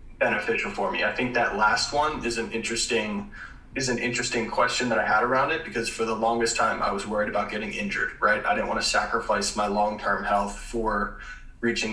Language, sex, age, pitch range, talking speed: English, male, 20-39, 105-120 Hz, 210 wpm